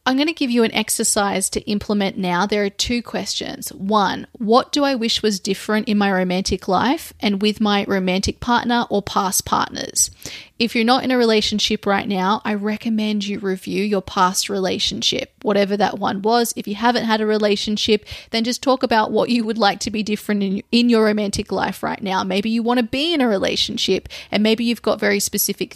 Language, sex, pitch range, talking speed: English, female, 200-240 Hz, 210 wpm